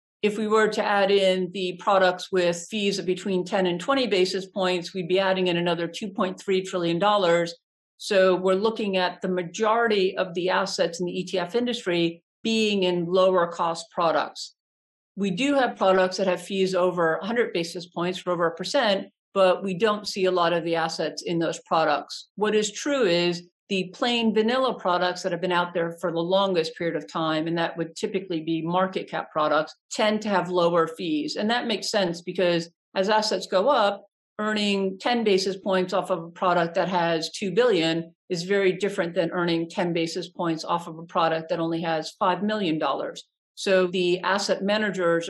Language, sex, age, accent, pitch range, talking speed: English, female, 50-69, American, 170-200 Hz, 190 wpm